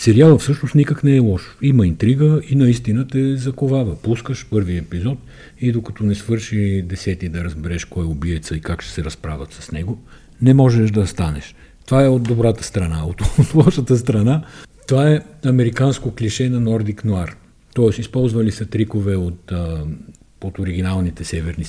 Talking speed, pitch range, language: 165 wpm, 85-120 Hz, Bulgarian